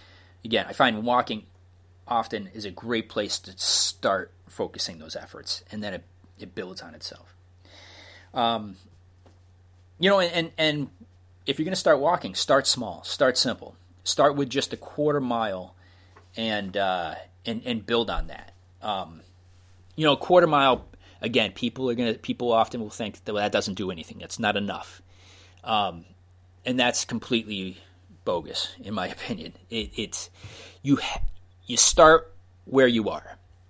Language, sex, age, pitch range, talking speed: English, male, 30-49, 90-115 Hz, 155 wpm